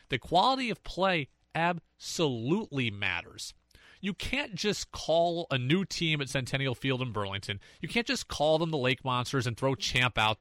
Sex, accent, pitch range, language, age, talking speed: male, American, 120-190 Hz, English, 30-49, 175 wpm